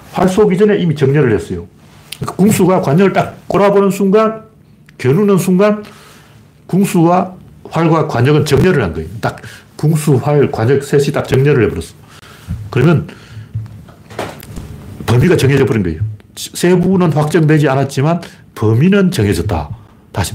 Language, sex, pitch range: Korean, male, 110-160 Hz